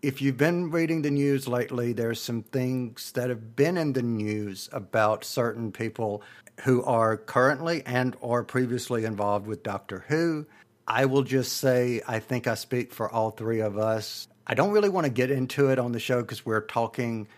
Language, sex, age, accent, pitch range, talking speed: English, male, 50-69, American, 110-130 Hz, 195 wpm